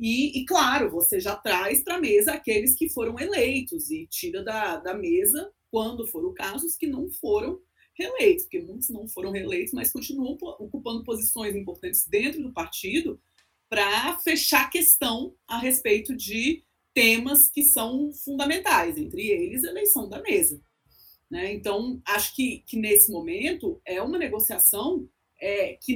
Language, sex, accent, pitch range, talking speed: Portuguese, female, Brazilian, 220-335 Hz, 150 wpm